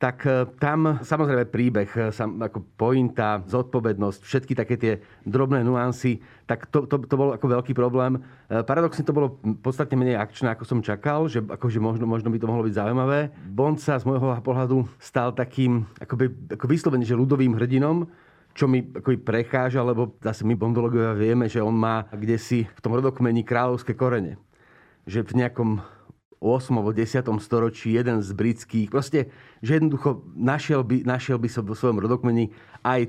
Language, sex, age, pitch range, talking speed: Slovak, male, 40-59, 115-135 Hz, 165 wpm